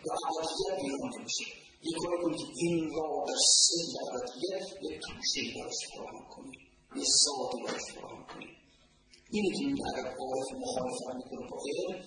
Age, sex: 40-59, male